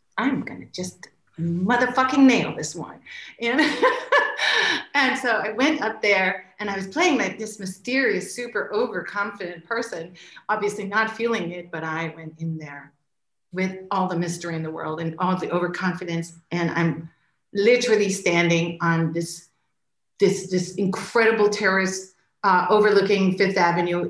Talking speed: 145 wpm